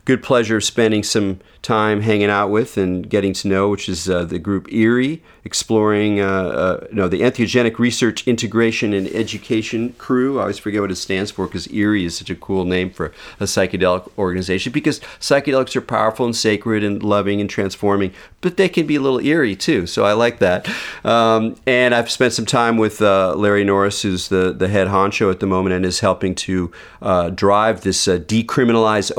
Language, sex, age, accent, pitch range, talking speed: English, male, 40-59, American, 95-115 Hz, 200 wpm